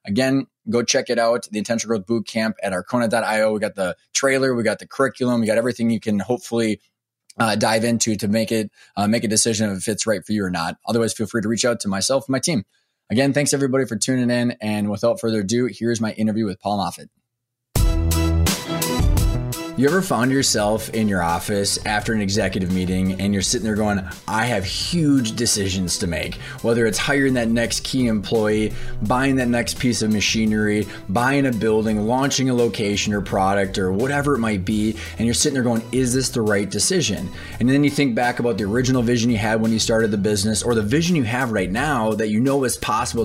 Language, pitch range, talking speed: English, 105-125 Hz, 215 wpm